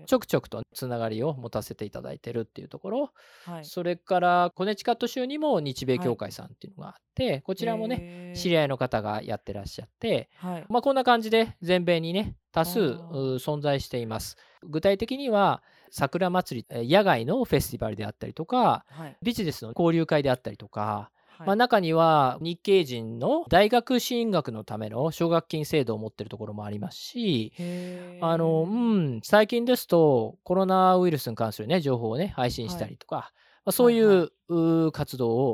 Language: Japanese